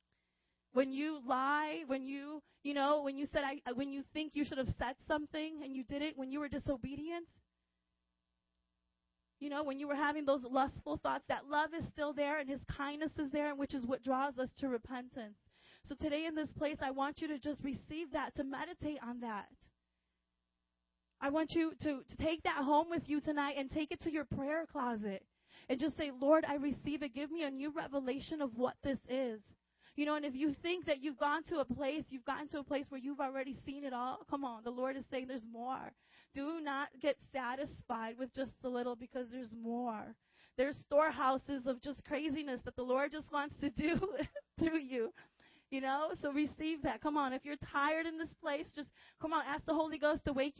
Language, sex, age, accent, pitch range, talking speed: English, female, 20-39, American, 260-300 Hz, 215 wpm